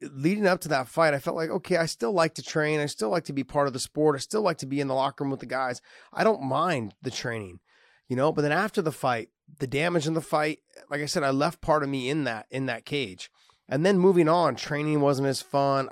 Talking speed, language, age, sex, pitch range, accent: 275 wpm, English, 30-49, male, 125-160 Hz, American